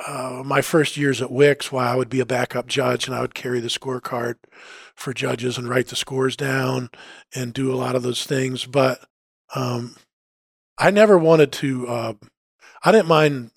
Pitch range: 120-145 Hz